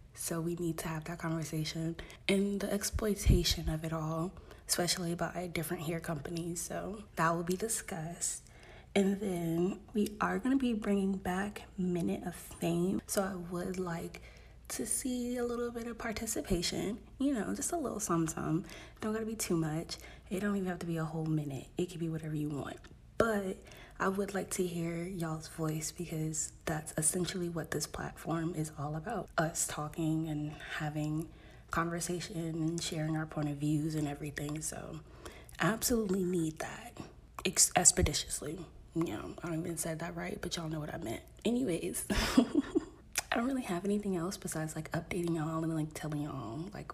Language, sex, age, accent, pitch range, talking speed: English, female, 20-39, American, 160-190 Hz, 180 wpm